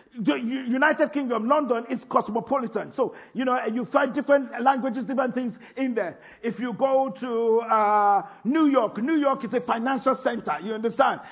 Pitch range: 230-285 Hz